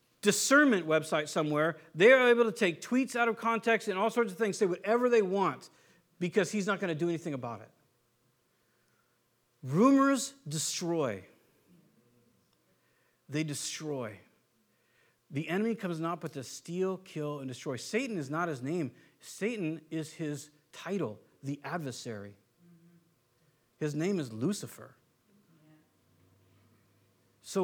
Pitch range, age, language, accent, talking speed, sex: 135-195 Hz, 50-69, English, American, 130 wpm, male